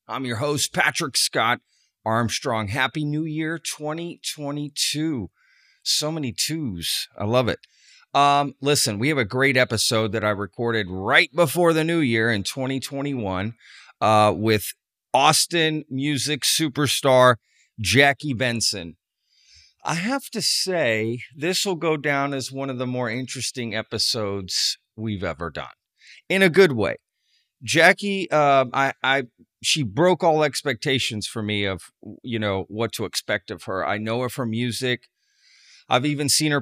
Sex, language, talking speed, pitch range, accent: male, English, 145 wpm, 110-150 Hz, American